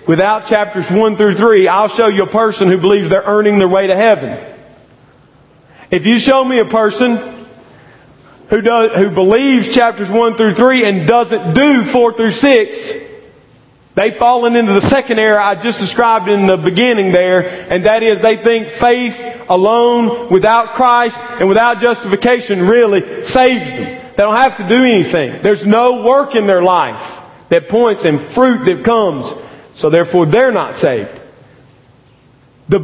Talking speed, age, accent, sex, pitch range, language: 165 wpm, 40-59, American, male, 180-230 Hz, English